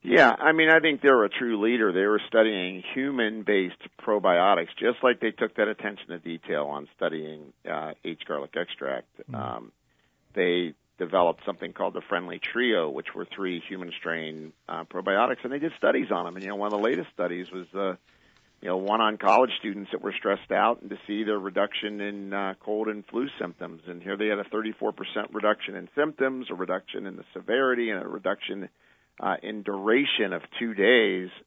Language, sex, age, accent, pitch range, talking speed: English, male, 50-69, American, 90-115 Hz, 195 wpm